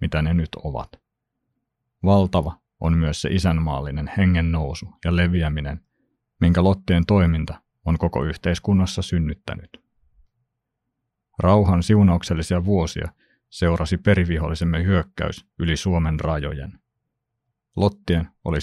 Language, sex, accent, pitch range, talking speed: Finnish, male, native, 85-100 Hz, 100 wpm